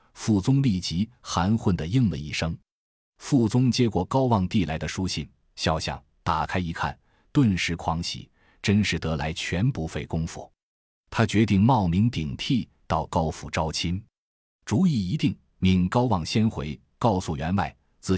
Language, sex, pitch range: Chinese, male, 80-110 Hz